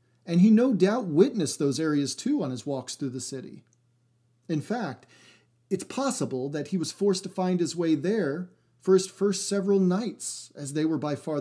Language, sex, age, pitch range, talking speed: English, male, 40-59, 130-185 Hz, 195 wpm